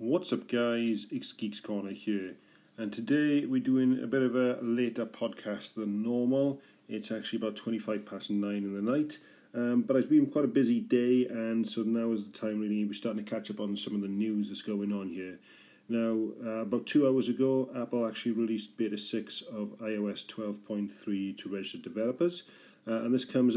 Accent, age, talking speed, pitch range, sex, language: British, 40-59, 200 wpm, 105-125 Hz, male, English